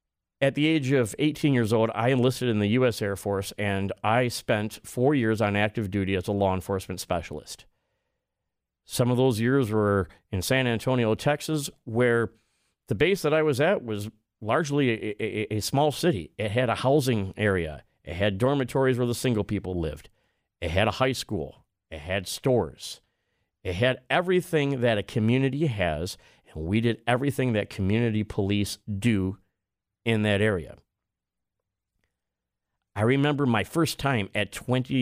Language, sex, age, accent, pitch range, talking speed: English, male, 40-59, American, 95-125 Hz, 165 wpm